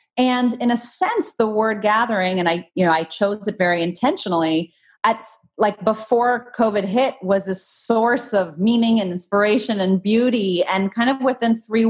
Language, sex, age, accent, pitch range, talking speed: English, female, 30-49, American, 180-235 Hz, 175 wpm